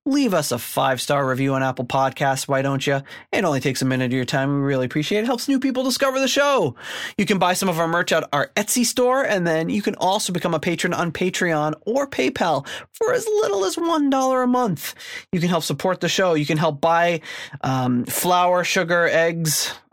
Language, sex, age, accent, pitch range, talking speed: English, male, 20-39, American, 140-190 Hz, 225 wpm